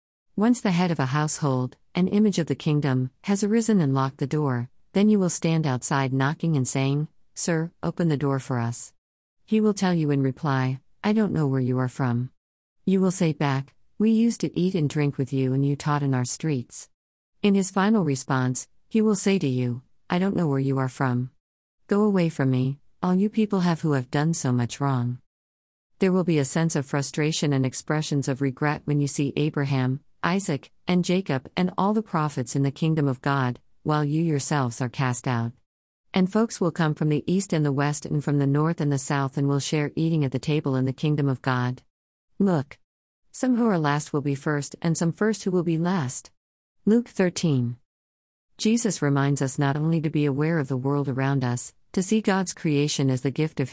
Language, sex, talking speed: English, female, 215 wpm